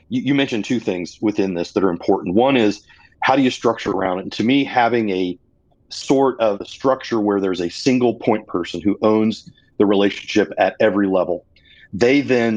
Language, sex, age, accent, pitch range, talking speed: English, male, 40-59, American, 100-130 Hz, 185 wpm